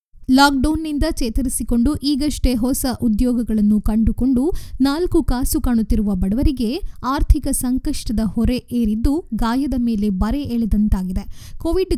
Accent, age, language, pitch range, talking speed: native, 20-39, Kannada, 220-280 Hz, 95 wpm